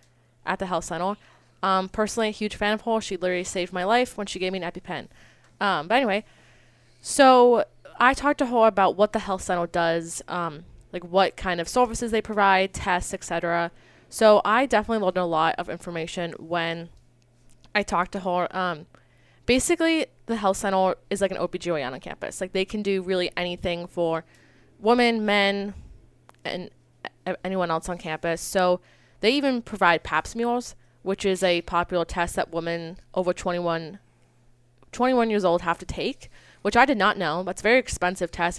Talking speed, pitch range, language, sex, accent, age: 180 wpm, 170-210 Hz, English, female, American, 20-39